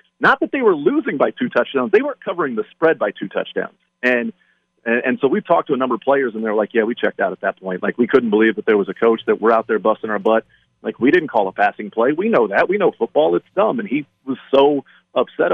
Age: 40-59